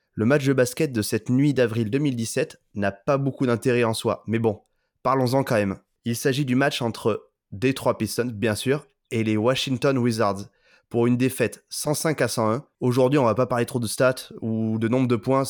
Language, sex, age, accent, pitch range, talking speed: French, male, 20-39, French, 115-135 Hz, 200 wpm